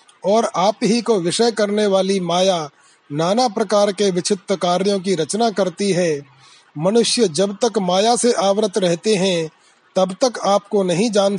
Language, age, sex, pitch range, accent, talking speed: Hindi, 30-49, male, 185-215 Hz, native, 160 wpm